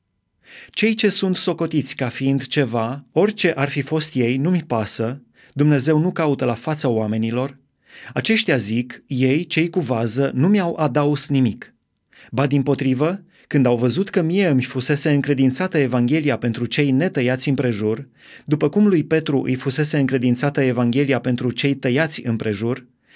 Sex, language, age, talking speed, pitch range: male, Romanian, 20-39, 150 wpm, 125-155 Hz